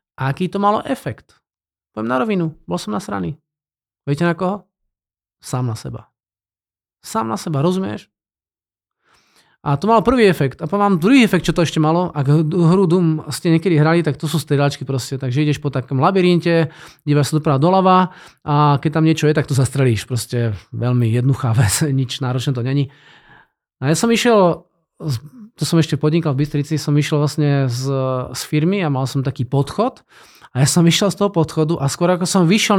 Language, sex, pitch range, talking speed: Slovak, male, 135-185 Hz, 190 wpm